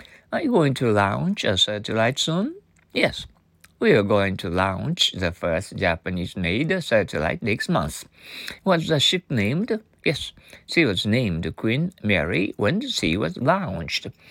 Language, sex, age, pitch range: Japanese, male, 60-79, 95-155 Hz